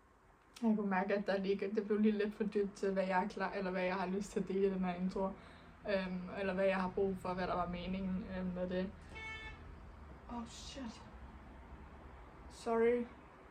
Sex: female